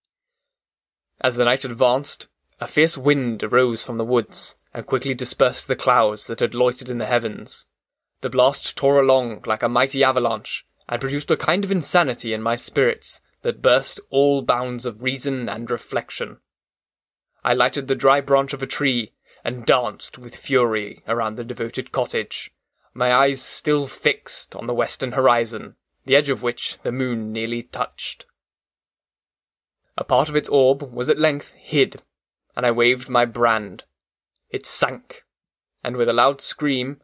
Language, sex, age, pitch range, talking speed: English, male, 20-39, 120-140 Hz, 160 wpm